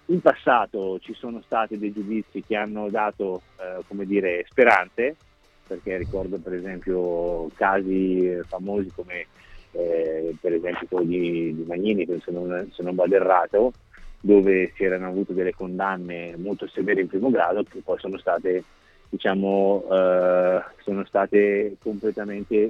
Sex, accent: male, native